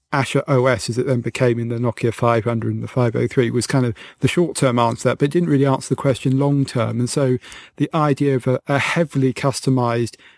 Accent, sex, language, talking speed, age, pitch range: British, male, English, 215 wpm, 40-59, 120-140 Hz